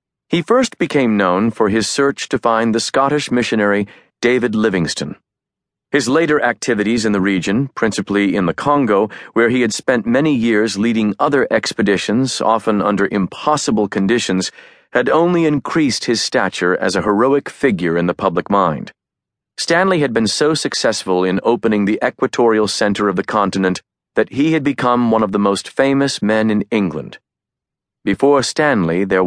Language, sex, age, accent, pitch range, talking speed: English, male, 40-59, American, 100-135 Hz, 160 wpm